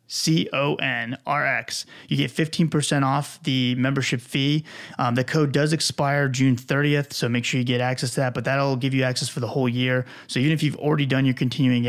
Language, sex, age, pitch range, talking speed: English, male, 30-49, 120-145 Hz, 205 wpm